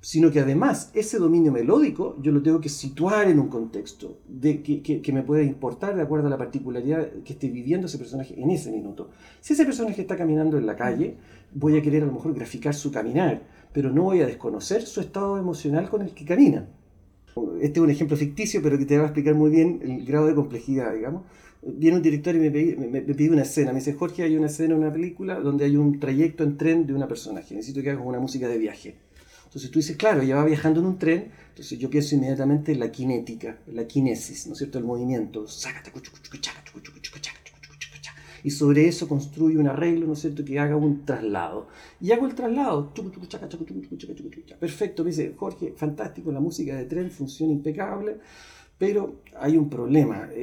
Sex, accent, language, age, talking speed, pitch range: male, Argentinian, Spanish, 40-59, 205 wpm, 140-165 Hz